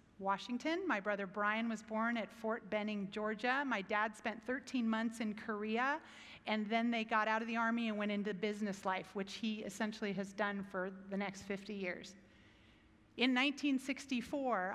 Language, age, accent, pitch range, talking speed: English, 40-59, American, 195-230 Hz, 170 wpm